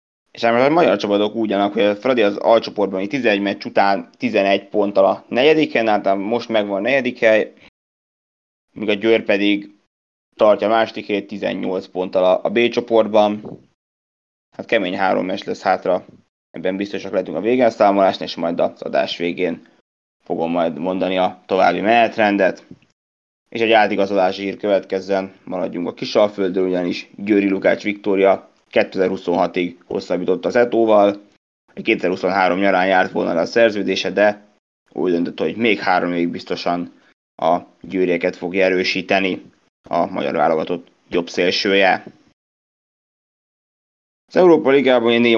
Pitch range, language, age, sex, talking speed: 95-110 Hz, Hungarian, 20-39, male, 135 wpm